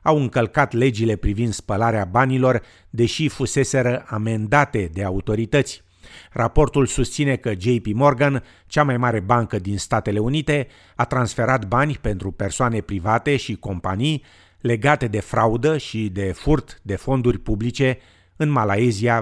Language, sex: Romanian, male